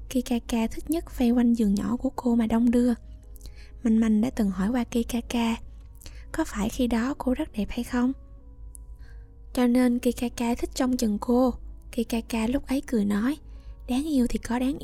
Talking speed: 180 wpm